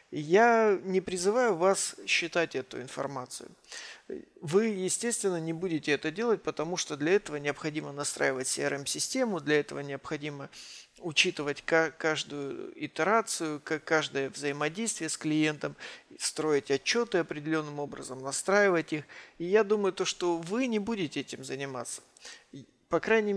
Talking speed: 120 wpm